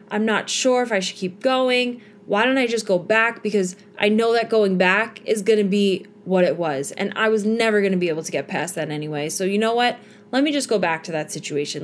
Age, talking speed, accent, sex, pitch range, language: 20-39, 265 wpm, American, female, 180-220 Hz, English